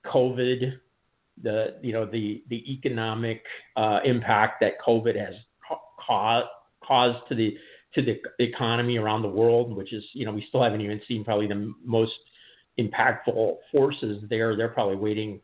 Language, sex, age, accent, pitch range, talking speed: English, male, 50-69, American, 105-120 Hz, 155 wpm